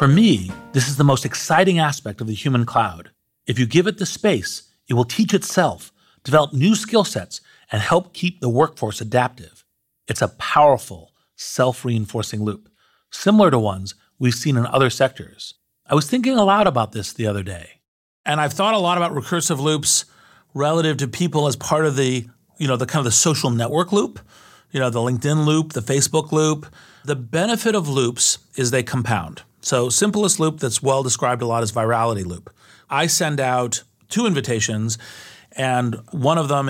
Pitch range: 120-160 Hz